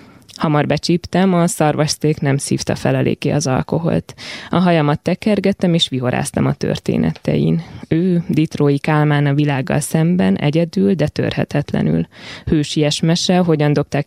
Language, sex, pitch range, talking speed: Hungarian, female, 145-180 Hz, 125 wpm